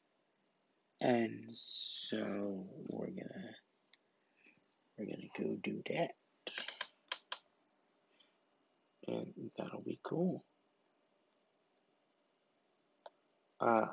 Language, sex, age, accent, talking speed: English, male, 30-49, American, 60 wpm